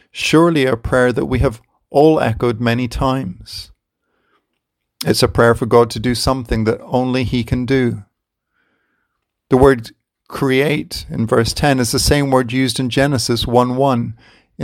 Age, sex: 50-69, male